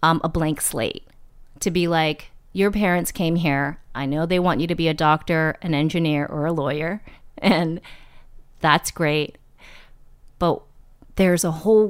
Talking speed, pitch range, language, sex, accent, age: 160 wpm, 155-210 Hz, English, female, American, 30-49